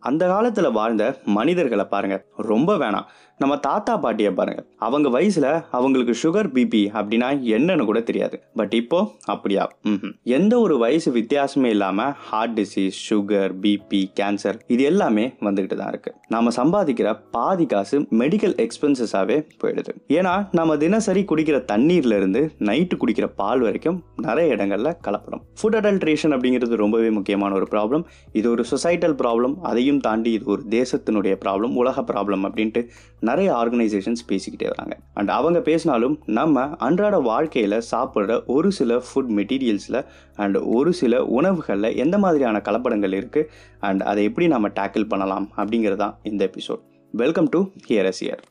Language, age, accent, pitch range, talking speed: Tamil, 20-39, native, 100-145 Hz, 90 wpm